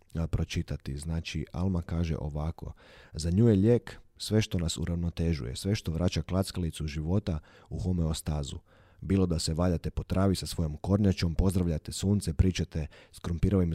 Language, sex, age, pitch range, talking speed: Croatian, male, 30-49, 80-100 Hz, 145 wpm